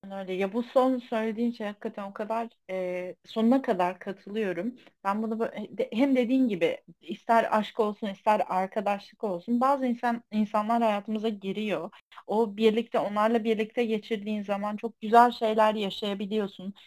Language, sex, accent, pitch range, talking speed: Turkish, female, native, 205-250 Hz, 140 wpm